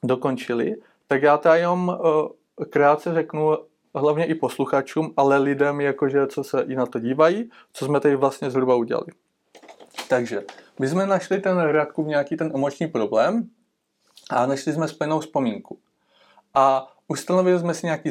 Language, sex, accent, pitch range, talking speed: Czech, male, native, 130-155 Hz, 150 wpm